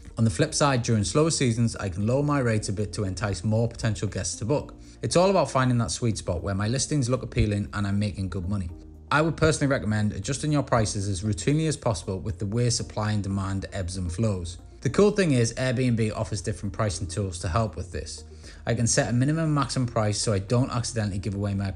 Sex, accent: male, British